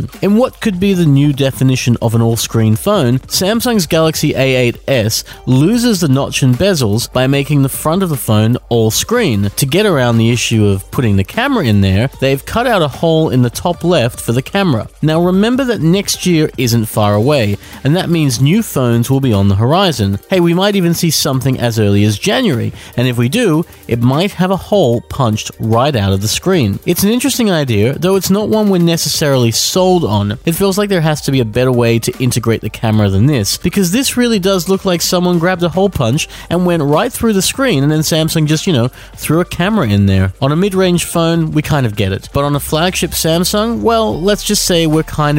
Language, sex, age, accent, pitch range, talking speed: English, male, 30-49, Australian, 115-175 Hz, 225 wpm